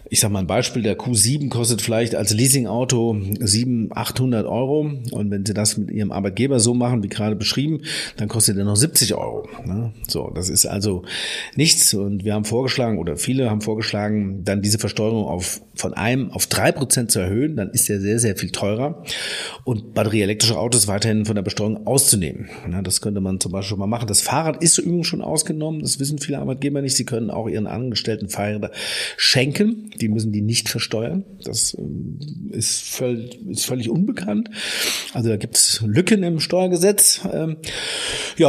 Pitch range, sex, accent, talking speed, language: 105-130 Hz, male, German, 175 wpm, German